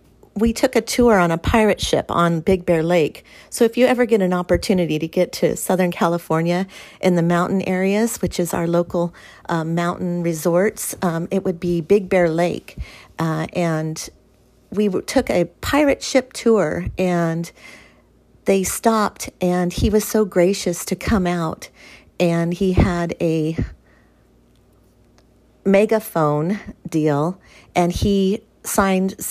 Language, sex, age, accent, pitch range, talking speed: English, female, 40-59, American, 165-205 Hz, 145 wpm